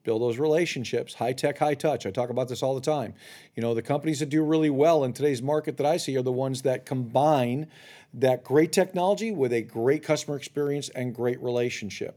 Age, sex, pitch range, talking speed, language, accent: 50-69, male, 140-190 Hz, 205 wpm, English, American